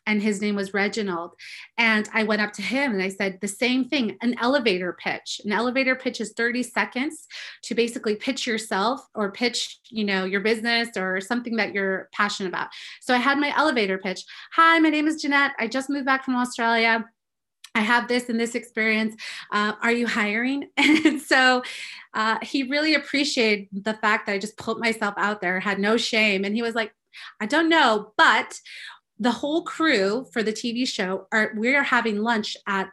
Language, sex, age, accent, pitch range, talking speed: English, female, 30-49, American, 205-255 Hz, 195 wpm